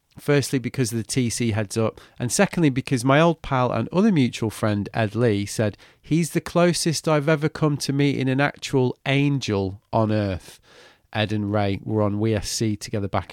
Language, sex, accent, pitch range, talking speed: English, male, British, 105-130 Hz, 185 wpm